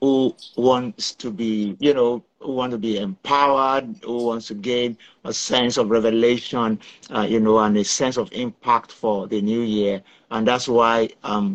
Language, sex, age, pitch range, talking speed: English, male, 50-69, 110-130 Hz, 180 wpm